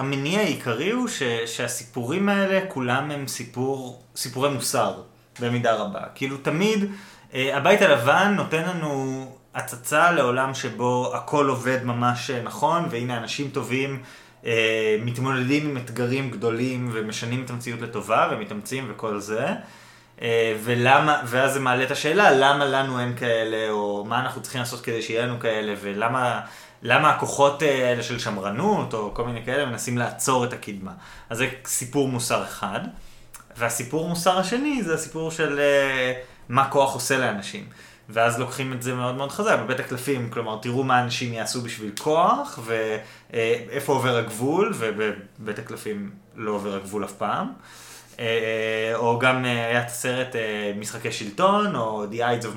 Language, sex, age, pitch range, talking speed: Hebrew, male, 20-39, 115-140 Hz, 145 wpm